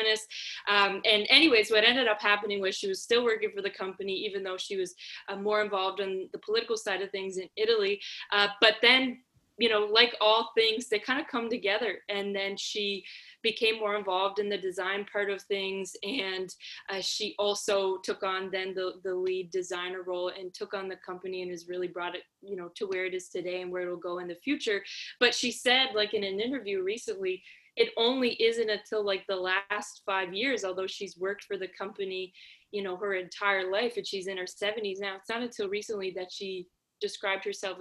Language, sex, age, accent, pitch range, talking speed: English, female, 20-39, American, 190-230 Hz, 210 wpm